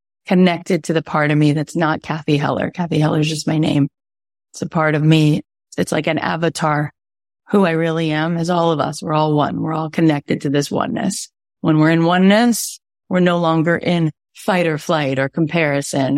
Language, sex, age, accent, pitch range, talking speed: English, female, 30-49, American, 155-180 Hz, 205 wpm